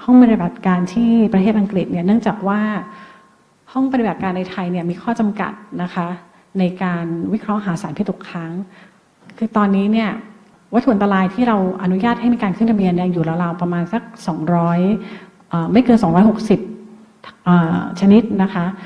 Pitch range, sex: 180-220 Hz, female